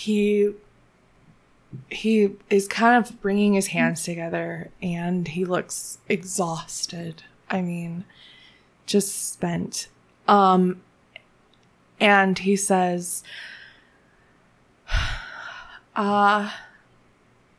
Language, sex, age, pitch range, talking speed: English, female, 20-39, 175-205 Hz, 75 wpm